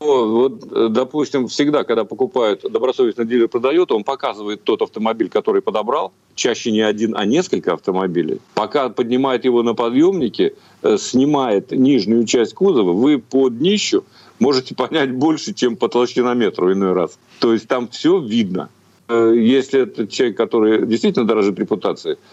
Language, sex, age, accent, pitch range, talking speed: Russian, male, 50-69, native, 110-160 Hz, 140 wpm